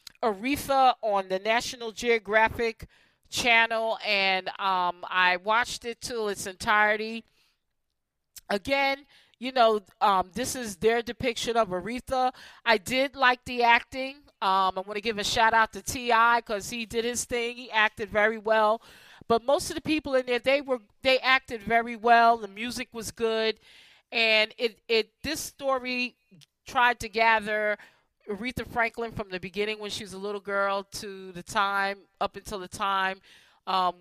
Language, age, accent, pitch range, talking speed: English, 40-59, American, 195-235 Hz, 165 wpm